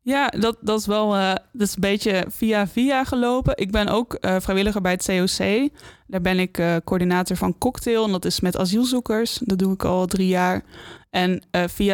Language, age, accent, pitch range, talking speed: Dutch, 20-39, Dutch, 180-210 Hz, 210 wpm